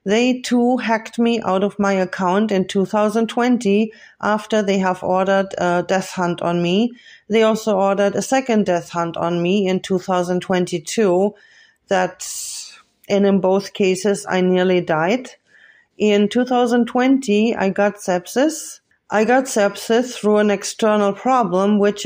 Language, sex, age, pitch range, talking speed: English, female, 30-49, 190-220 Hz, 140 wpm